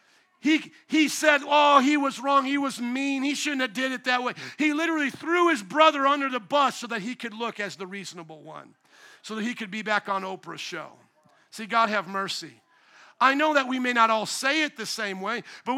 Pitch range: 220-275 Hz